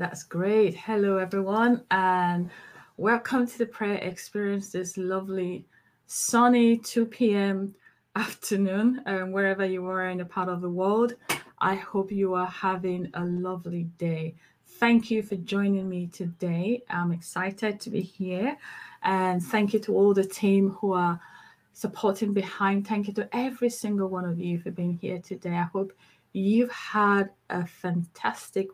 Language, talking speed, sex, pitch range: English, 155 wpm, female, 180-205 Hz